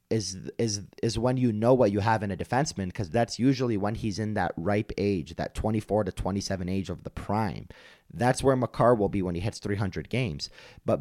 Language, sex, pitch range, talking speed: English, male, 95-120 Hz, 220 wpm